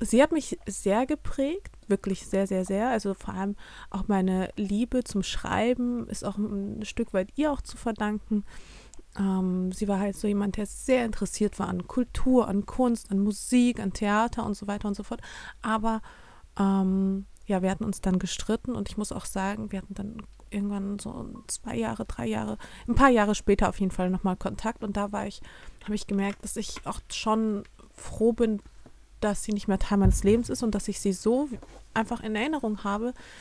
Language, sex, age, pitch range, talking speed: German, female, 20-39, 195-225 Hz, 200 wpm